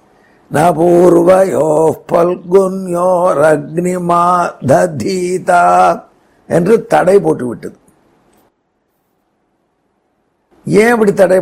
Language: Tamil